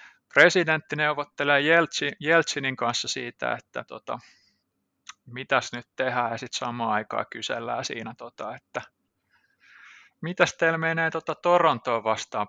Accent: native